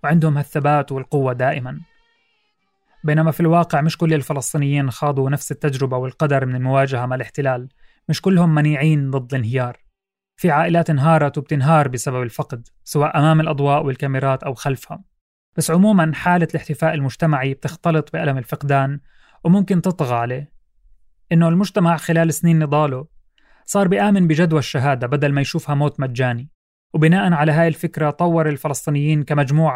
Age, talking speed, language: 30-49, 135 wpm, Arabic